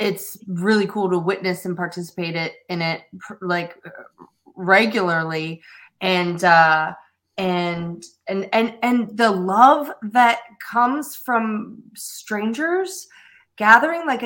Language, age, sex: English, 20-39, female